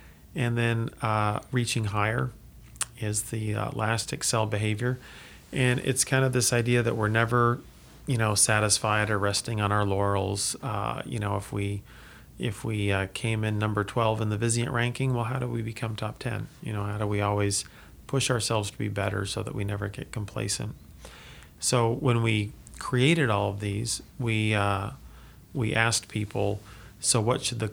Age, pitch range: 40-59, 105-120 Hz